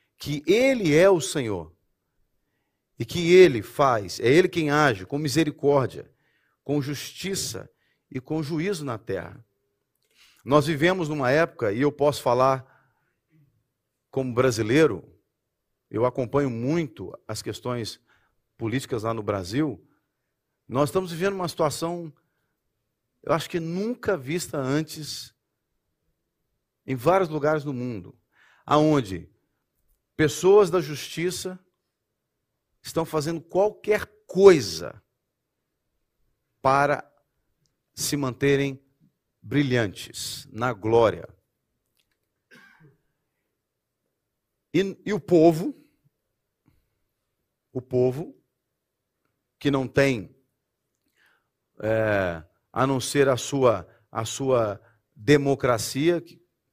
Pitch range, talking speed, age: 120-165 Hz, 95 wpm, 40-59